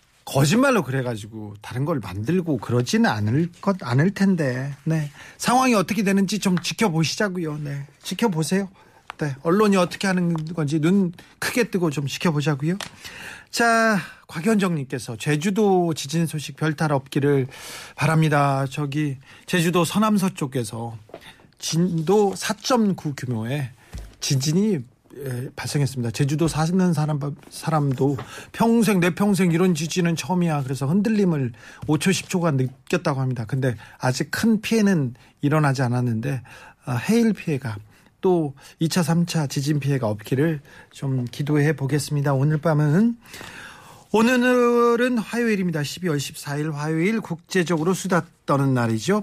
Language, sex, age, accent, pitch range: Korean, male, 40-59, native, 140-190 Hz